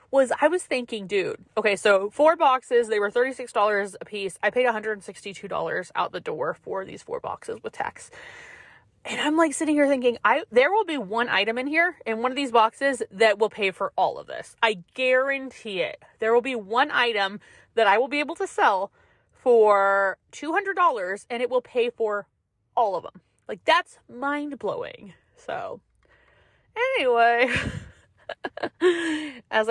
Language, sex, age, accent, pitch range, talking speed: English, female, 30-49, American, 195-295 Hz, 170 wpm